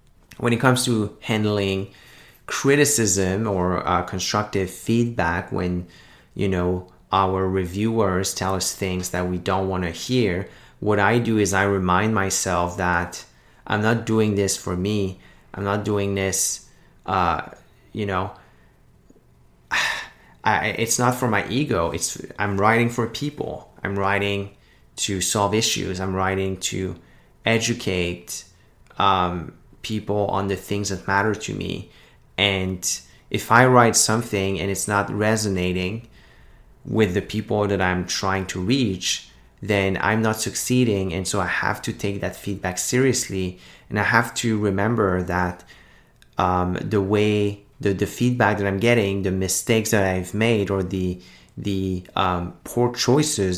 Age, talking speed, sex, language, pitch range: 30-49, 145 wpm, male, English, 90-110 Hz